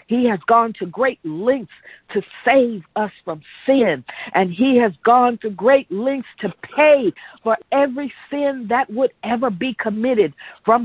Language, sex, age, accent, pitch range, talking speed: English, female, 50-69, American, 200-265 Hz, 160 wpm